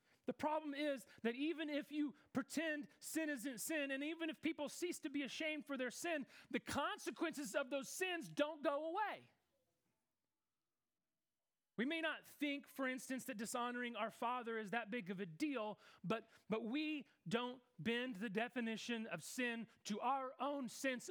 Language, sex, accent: English, male, American